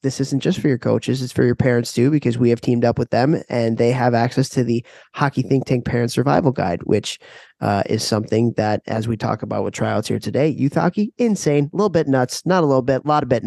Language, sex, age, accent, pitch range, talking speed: English, male, 20-39, American, 120-140 Hz, 260 wpm